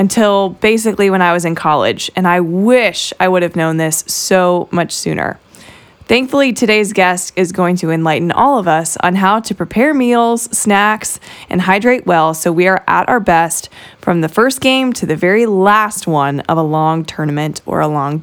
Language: English